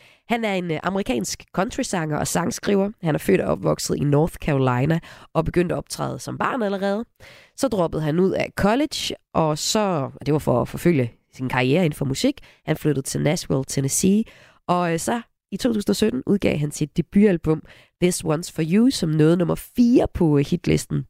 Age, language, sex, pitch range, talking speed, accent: 20-39, Danish, female, 140-180 Hz, 175 wpm, native